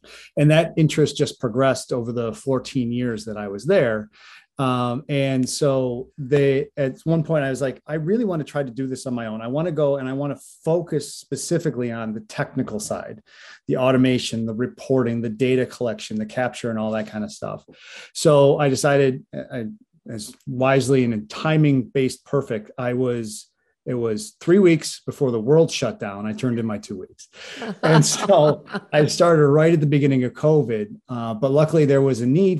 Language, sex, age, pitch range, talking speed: English, male, 30-49, 115-145 Hz, 200 wpm